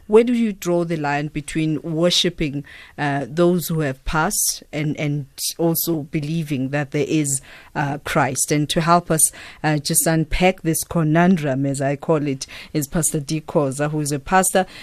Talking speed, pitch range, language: 175 wpm, 145-170 Hz, English